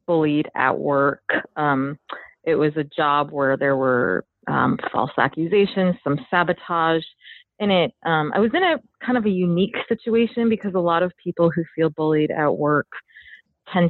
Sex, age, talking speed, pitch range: female, 30-49, 170 wpm, 150-185 Hz